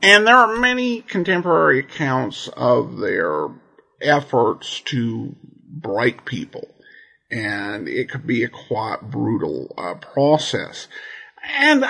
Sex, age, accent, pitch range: male, 50-69, American, 130-175 Hz